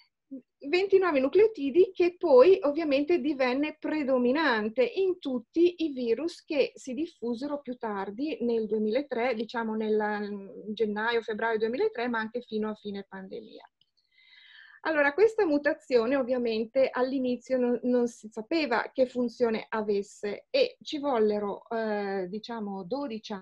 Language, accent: Italian, native